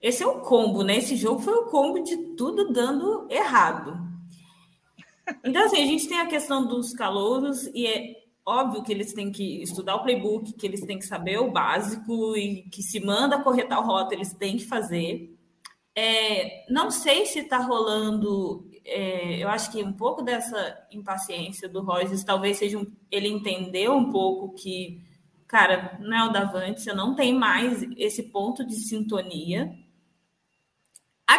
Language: Portuguese